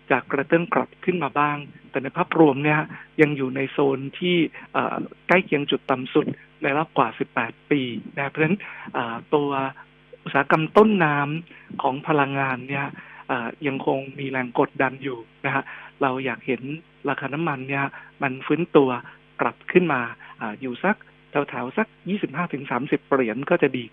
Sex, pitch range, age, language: male, 135-170 Hz, 60-79, Thai